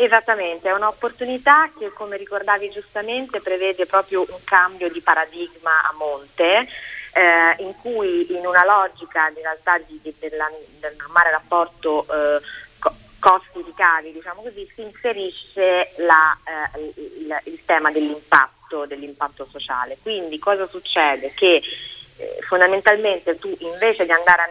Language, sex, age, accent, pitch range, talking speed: Italian, female, 30-49, native, 155-200 Hz, 125 wpm